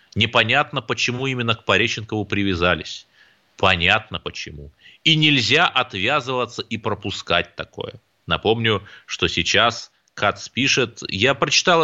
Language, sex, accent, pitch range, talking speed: Russian, male, native, 110-165 Hz, 105 wpm